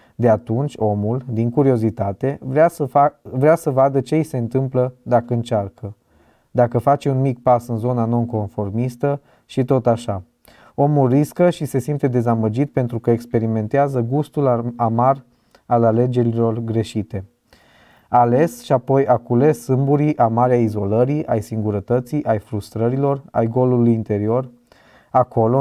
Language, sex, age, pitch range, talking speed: Romanian, male, 20-39, 110-135 Hz, 130 wpm